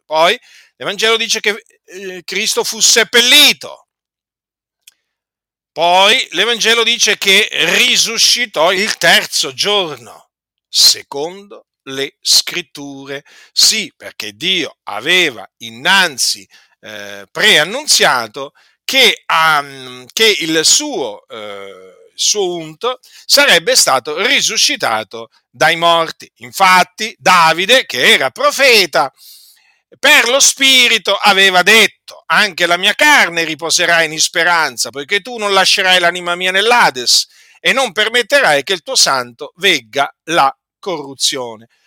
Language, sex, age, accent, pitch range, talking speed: Italian, male, 50-69, native, 165-250 Hz, 105 wpm